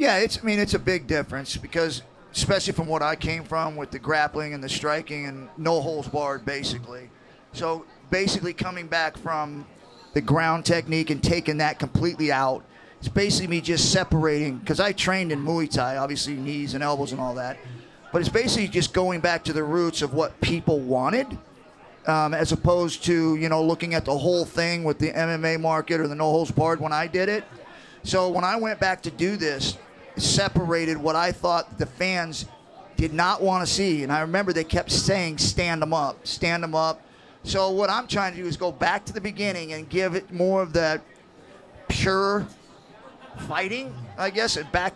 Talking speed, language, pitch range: 200 wpm, English, 155-185 Hz